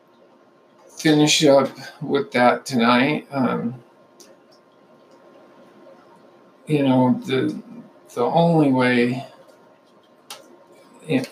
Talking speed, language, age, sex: 70 wpm, English, 50-69, male